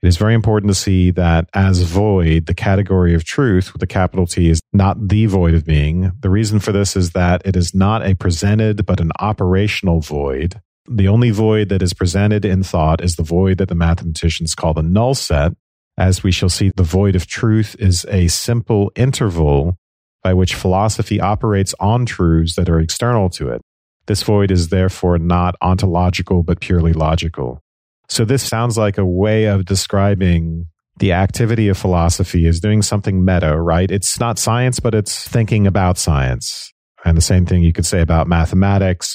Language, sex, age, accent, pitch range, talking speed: English, male, 40-59, American, 85-100 Hz, 185 wpm